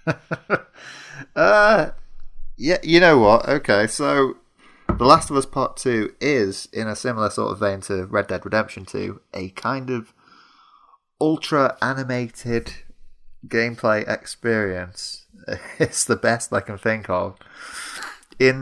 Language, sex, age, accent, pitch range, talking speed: English, male, 30-49, British, 100-130 Hz, 125 wpm